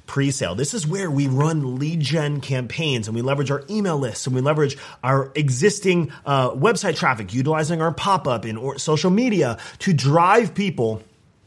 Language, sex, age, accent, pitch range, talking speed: English, male, 30-49, American, 120-160 Hz, 175 wpm